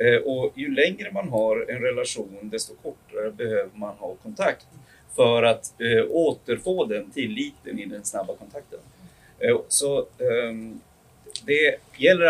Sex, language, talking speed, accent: male, Swedish, 120 wpm, native